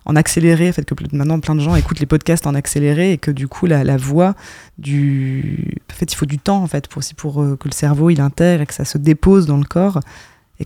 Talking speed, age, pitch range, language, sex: 265 wpm, 20-39, 140-165 Hz, French, female